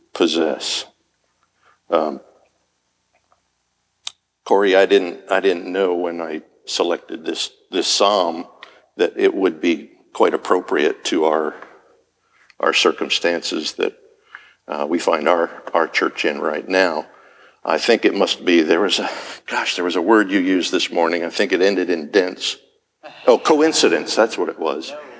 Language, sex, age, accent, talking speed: English, male, 60-79, American, 150 wpm